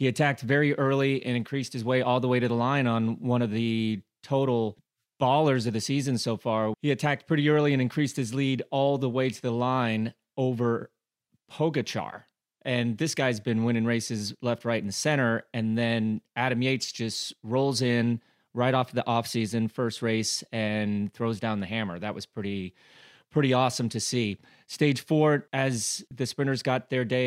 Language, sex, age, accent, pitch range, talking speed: English, male, 30-49, American, 115-135 Hz, 185 wpm